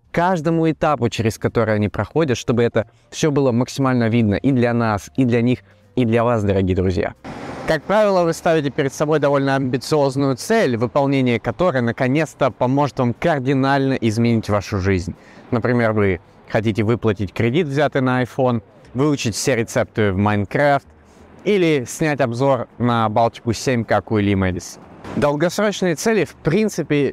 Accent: native